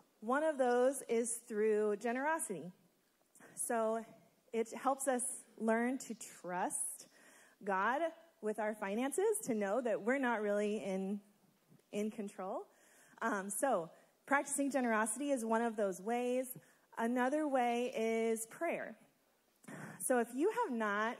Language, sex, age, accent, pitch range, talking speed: English, female, 30-49, American, 205-255 Hz, 125 wpm